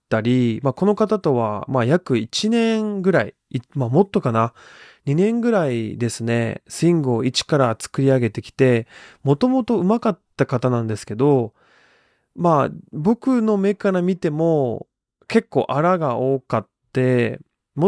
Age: 20-39